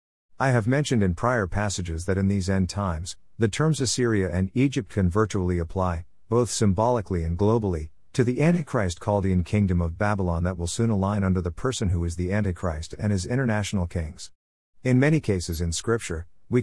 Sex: male